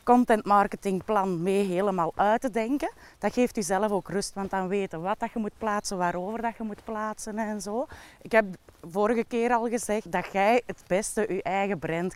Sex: female